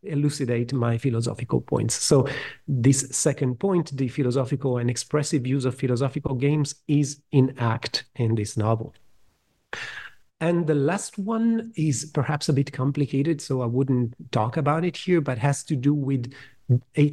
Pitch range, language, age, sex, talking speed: 125-145 Hz, English, 40-59, male, 155 wpm